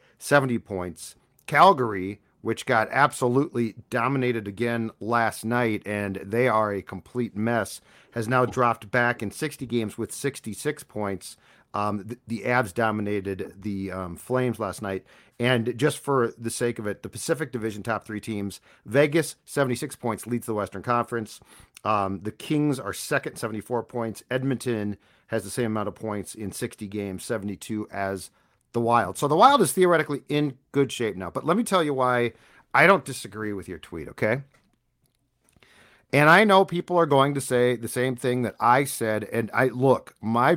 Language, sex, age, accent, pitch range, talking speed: English, male, 40-59, American, 105-135 Hz, 175 wpm